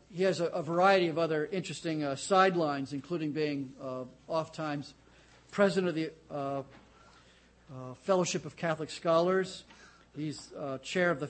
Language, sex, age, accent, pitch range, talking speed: English, male, 50-69, American, 155-190 Hz, 155 wpm